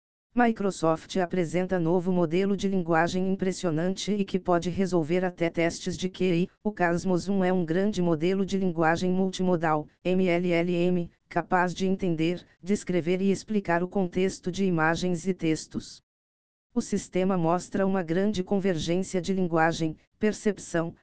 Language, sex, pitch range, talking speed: Portuguese, female, 170-190 Hz, 135 wpm